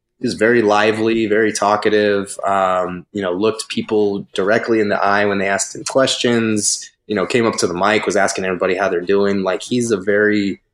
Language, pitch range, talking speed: English, 95-105 Hz, 200 wpm